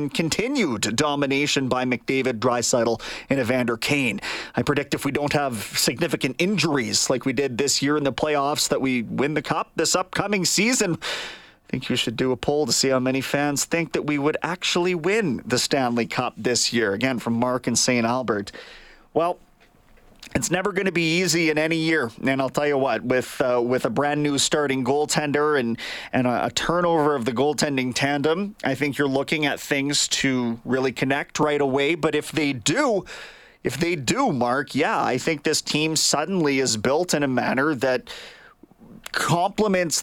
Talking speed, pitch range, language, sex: 185 wpm, 125-150 Hz, English, male